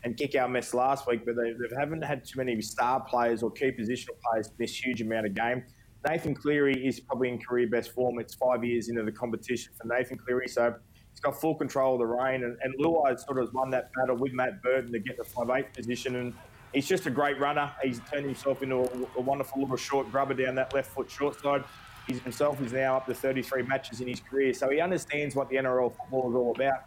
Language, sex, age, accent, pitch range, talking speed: English, male, 20-39, Australian, 120-140 Hz, 240 wpm